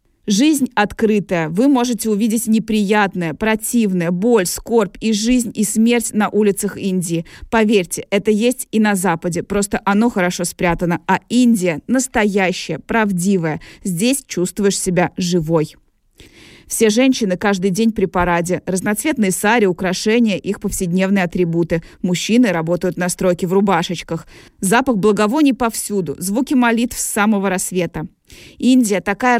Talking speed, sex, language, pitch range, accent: 125 wpm, female, Russian, 175-220 Hz, native